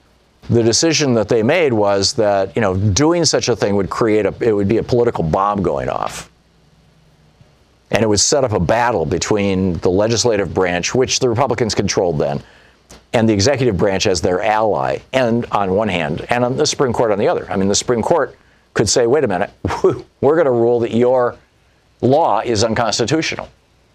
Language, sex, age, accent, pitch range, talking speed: English, male, 50-69, American, 105-135 Hz, 195 wpm